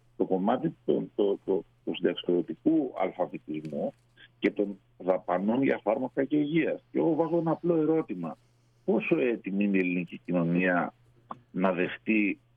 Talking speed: 125 wpm